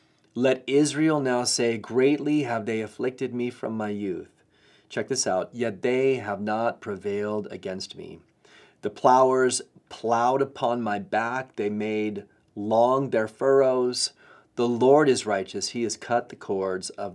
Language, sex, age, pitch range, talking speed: English, male, 30-49, 105-130 Hz, 150 wpm